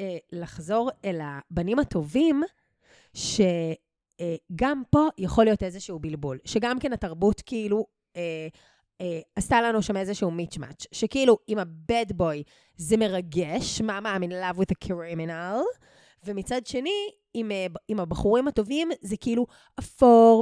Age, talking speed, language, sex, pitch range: 20-39, 125 wpm, Hebrew, female, 185-245 Hz